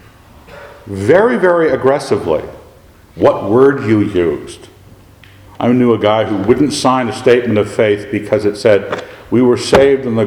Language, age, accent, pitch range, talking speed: English, 60-79, American, 105-155 Hz, 150 wpm